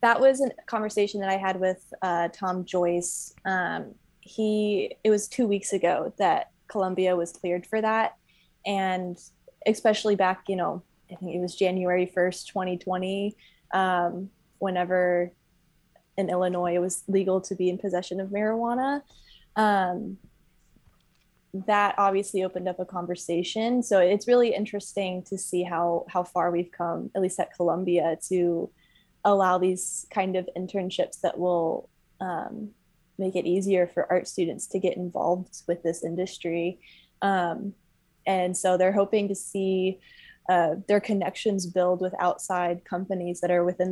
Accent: American